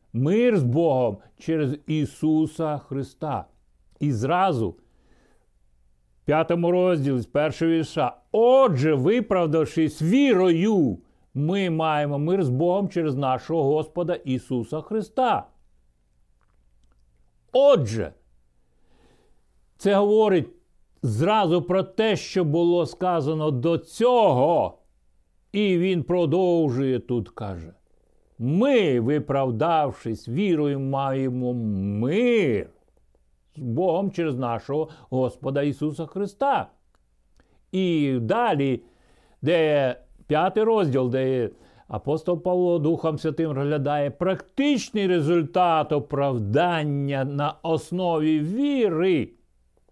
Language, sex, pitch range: Ukrainian, male, 130-175 Hz